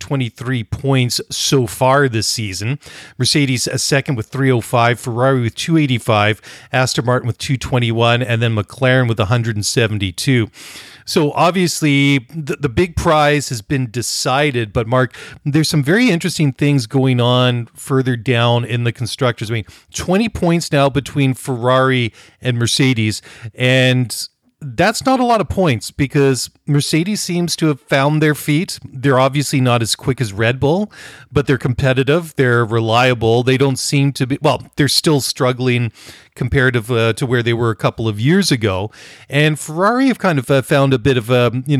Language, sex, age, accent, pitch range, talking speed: English, male, 40-59, American, 120-145 Hz, 165 wpm